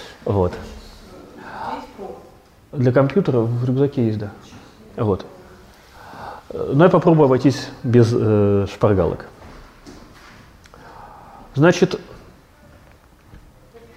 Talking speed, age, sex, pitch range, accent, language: 70 wpm, 30-49, male, 125-185 Hz, native, Russian